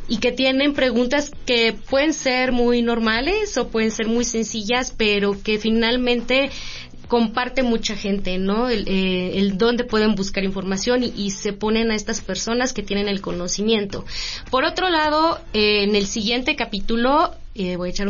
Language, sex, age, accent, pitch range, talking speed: Spanish, female, 20-39, Mexican, 200-245 Hz, 170 wpm